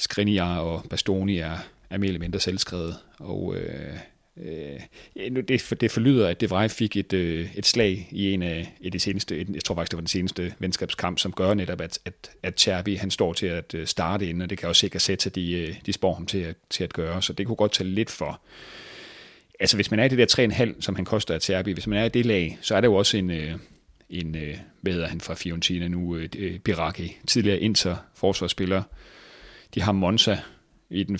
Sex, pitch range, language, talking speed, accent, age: male, 90-105 Hz, Danish, 225 wpm, native, 30-49